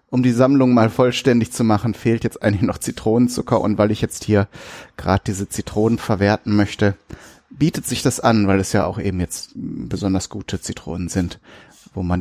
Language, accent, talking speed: German, German, 185 wpm